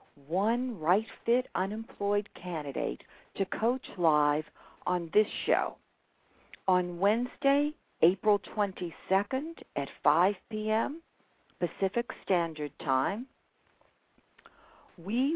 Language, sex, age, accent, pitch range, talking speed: English, female, 60-79, American, 175-245 Hz, 85 wpm